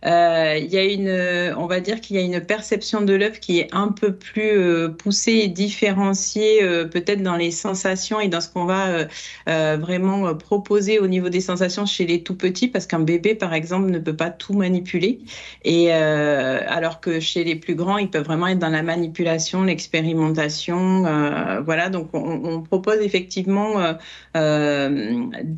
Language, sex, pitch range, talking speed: French, female, 165-200 Hz, 190 wpm